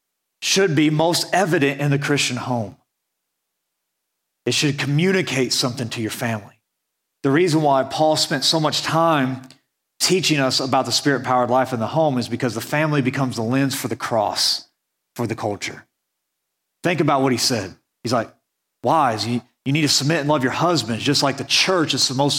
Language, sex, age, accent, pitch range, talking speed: English, male, 30-49, American, 135-185 Hz, 180 wpm